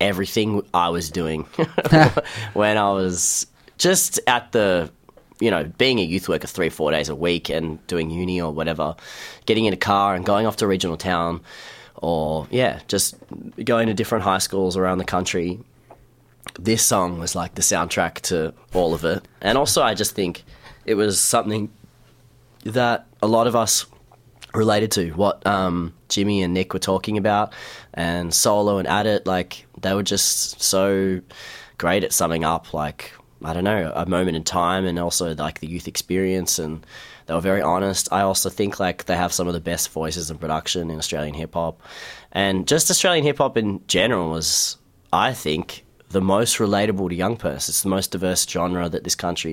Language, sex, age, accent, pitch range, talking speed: English, male, 20-39, Australian, 80-100 Hz, 185 wpm